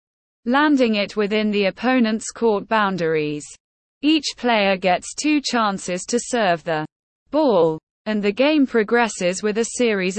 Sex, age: female, 20-39